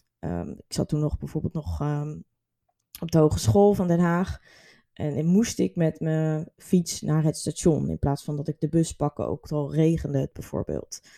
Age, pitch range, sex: 20-39, 155-180 Hz, female